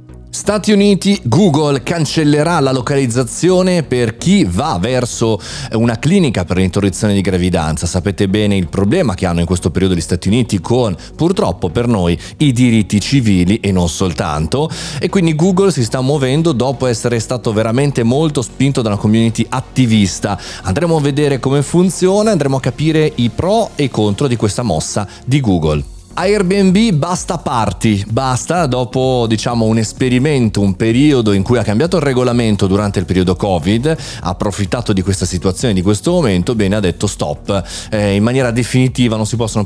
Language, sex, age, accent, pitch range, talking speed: Italian, male, 30-49, native, 100-140 Hz, 170 wpm